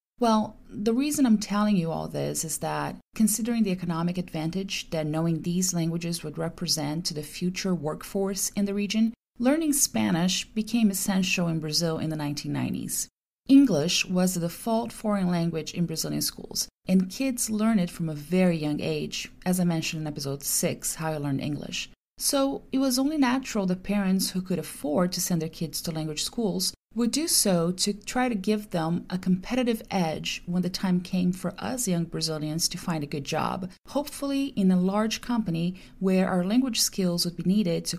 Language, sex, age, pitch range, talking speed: English, female, 30-49, 165-215 Hz, 185 wpm